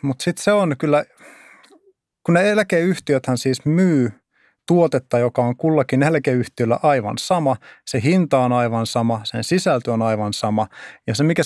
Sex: male